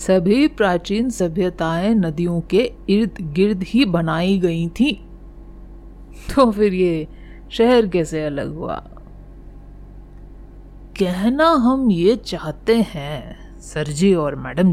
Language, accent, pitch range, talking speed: Hindi, native, 155-215 Hz, 110 wpm